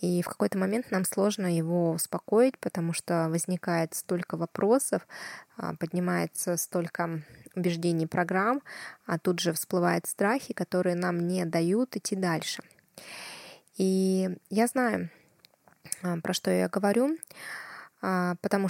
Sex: female